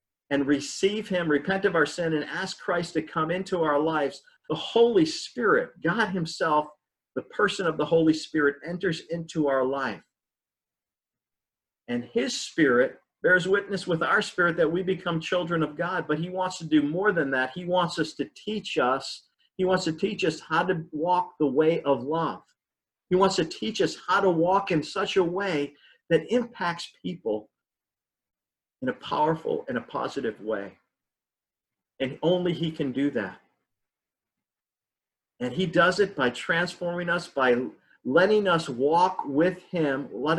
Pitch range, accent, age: 150-185 Hz, American, 50-69